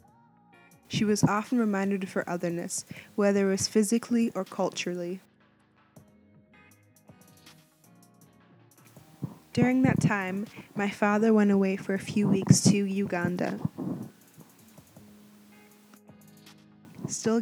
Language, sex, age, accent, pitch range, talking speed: English, female, 10-29, American, 175-205 Hz, 95 wpm